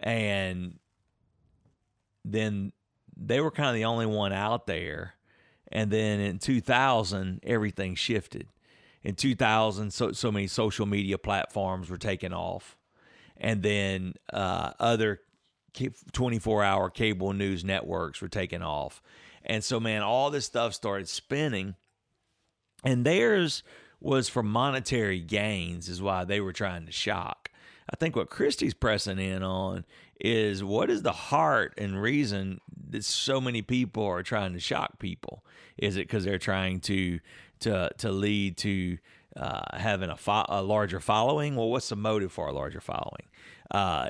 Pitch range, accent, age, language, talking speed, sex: 95-115 Hz, American, 40-59, English, 150 wpm, male